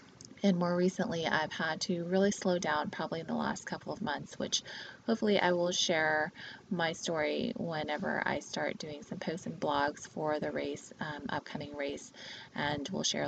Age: 20-39